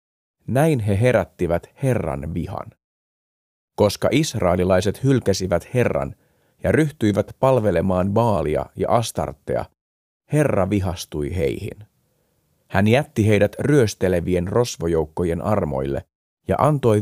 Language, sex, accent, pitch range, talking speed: Finnish, male, native, 90-120 Hz, 90 wpm